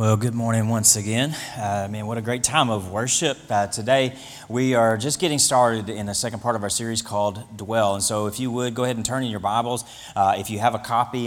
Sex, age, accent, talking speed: male, 30-49, American, 250 wpm